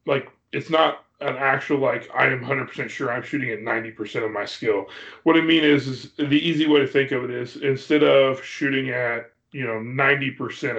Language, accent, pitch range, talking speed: English, American, 120-145 Hz, 205 wpm